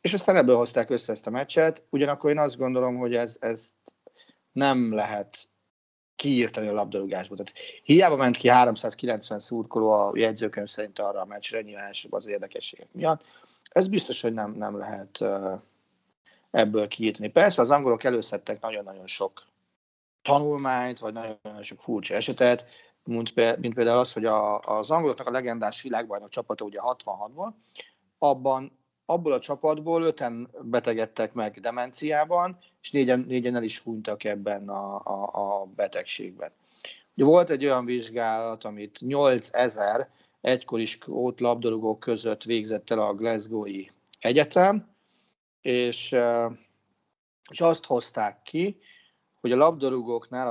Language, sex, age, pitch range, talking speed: Hungarian, male, 40-59, 105-130 Hz, 130 wpm